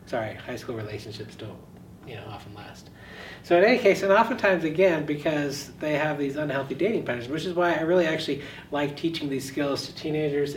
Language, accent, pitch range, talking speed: English, American, 130-160 Hz, 185 wpm